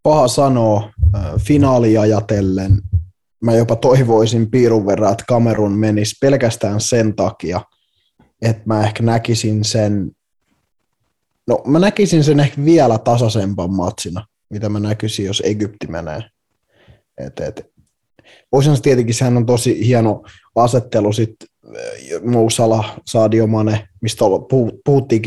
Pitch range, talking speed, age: 105-130 Hz, 115 wpm, 20-39